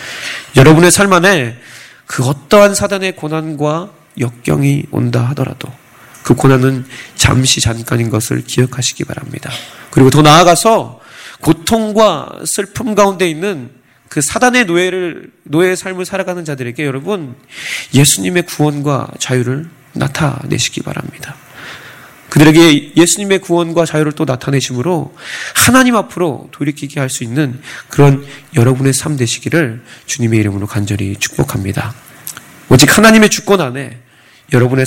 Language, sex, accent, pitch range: Korean, male, native, 125-165 Hz